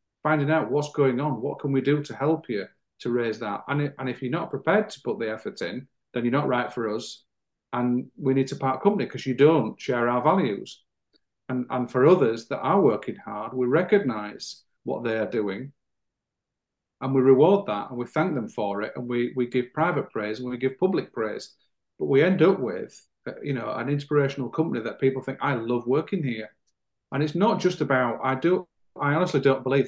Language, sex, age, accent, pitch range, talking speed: English, male, 40-59, British, 120-145 Hz, 215 wpm